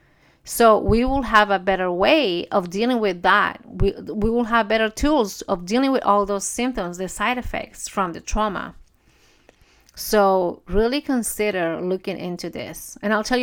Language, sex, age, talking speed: English, female, 30-49, 170 wpm